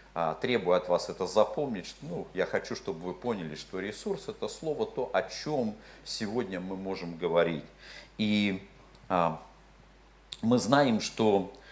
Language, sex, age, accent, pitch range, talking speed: Russian, male, 50-69, native, 95-115 Hz, 140 wpm